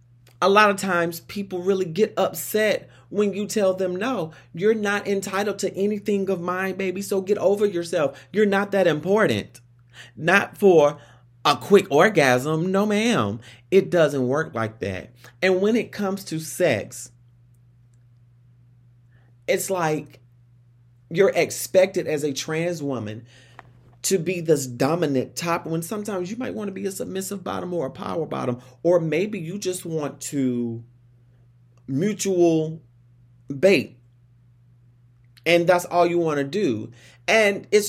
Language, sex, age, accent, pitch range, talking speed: English, male, 30-49, American, 125-190 Hz, 145 wpm